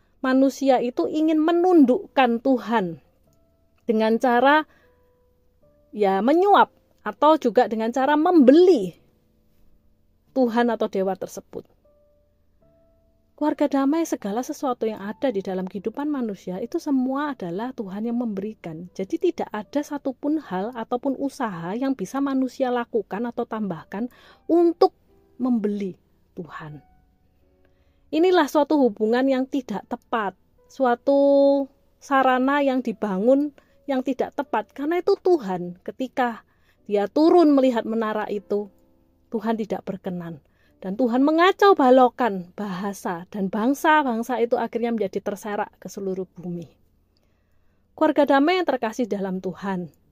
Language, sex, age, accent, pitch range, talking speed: Indonesian, female, 30-49, native, 185-270 Hz, 115 wpm